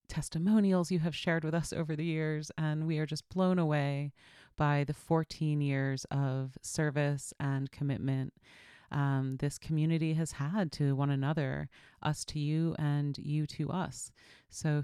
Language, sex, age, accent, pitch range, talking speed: English, female, 30-49, American, 140-170 Hz, 160 wpm